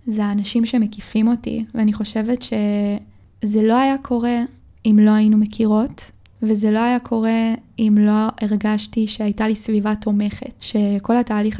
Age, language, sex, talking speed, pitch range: 10-29, Hebrew, female, 140 wpm, 210-235 Hz